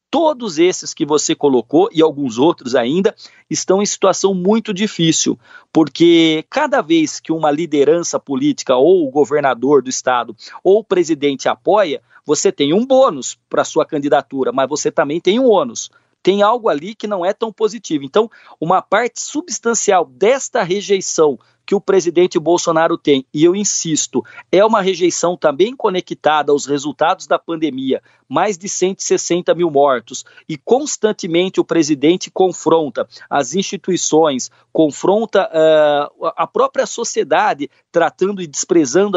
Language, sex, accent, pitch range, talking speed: Portuguese, male, Brazilian, 155-220 Hz, 145 wpm